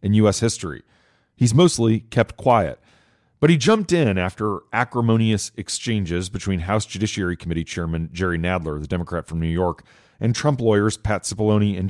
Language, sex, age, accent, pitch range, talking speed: English, male, 40-59, American, 95-115 Hz, 160 wpm